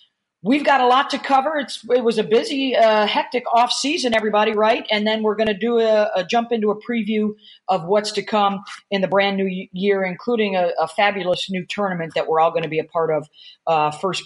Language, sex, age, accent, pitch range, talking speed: English, female, 40-59, American, 175-225 Hz, 225 wpm